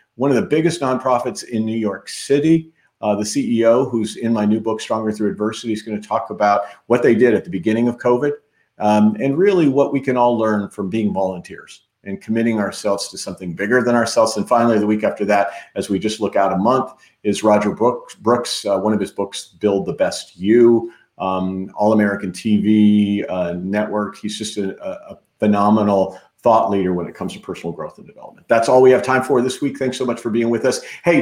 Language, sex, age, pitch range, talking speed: English, male, 40-59, 105-130 Hz, 215 wpm